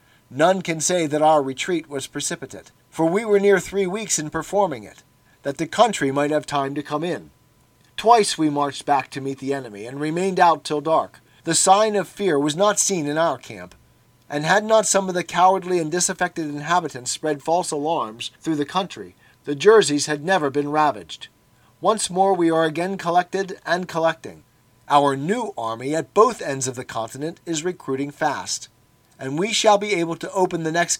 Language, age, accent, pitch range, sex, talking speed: English, 40-59, American, 140-180 Hz, male, 195 wpm